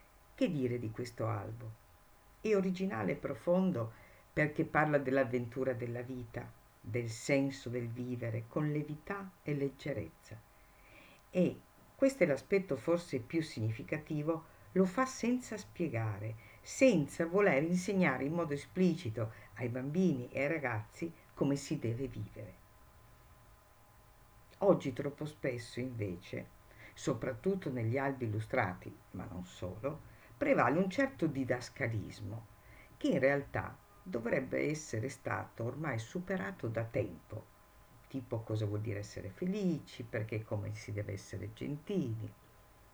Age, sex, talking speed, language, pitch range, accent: 50-69, female, 115 wpm, Italian, 105-150 Hz, native